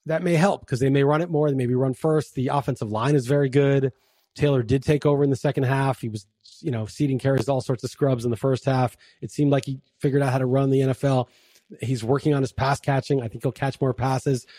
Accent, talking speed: American, 265 wpm